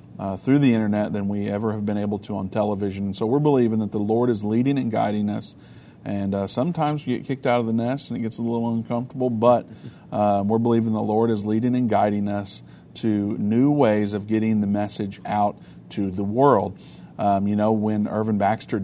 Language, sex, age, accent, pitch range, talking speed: English, male, 50-69, American, 105-120 Hz, 215 wpm